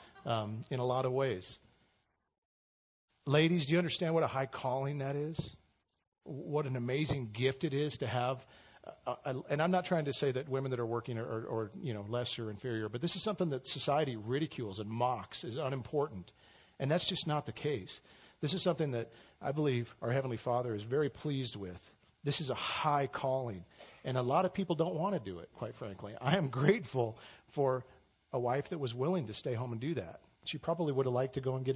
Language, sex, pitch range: English, male, 110-150 Hz